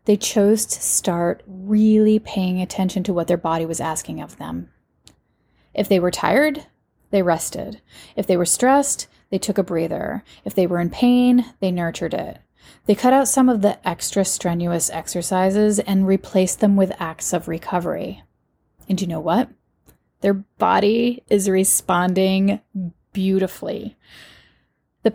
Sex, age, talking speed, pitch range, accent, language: female, 30-49, 150 wpm, 175-225 Hz, American, English